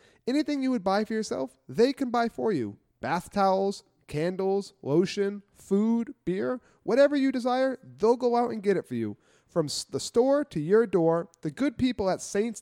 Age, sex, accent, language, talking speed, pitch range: 30-49, male, American, English, 185 wpm, 155-235 Hz